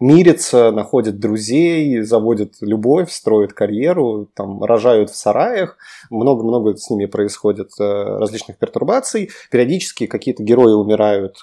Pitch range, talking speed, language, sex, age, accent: 105-125 Hz, 110 wpm, Russian, male, 20-39, native